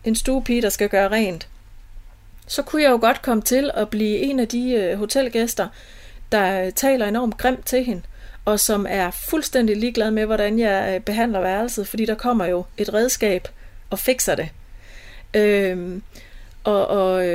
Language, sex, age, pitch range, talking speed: Danish, female, 30-49, 195-230 Hz, 165 wpm